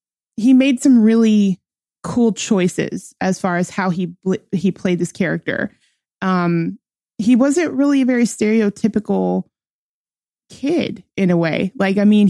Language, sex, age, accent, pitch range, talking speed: English, female, 20-39, American, 175-205 Hz, 140 wpm